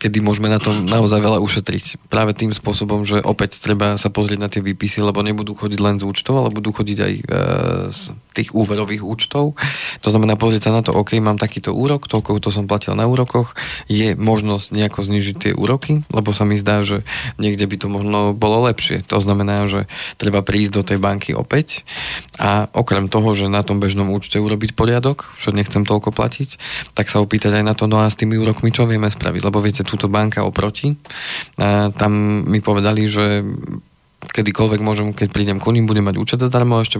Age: 20-39